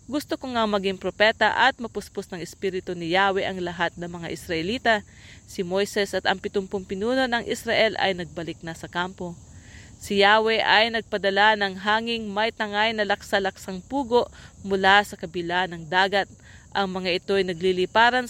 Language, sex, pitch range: English, female, 185-220 Hz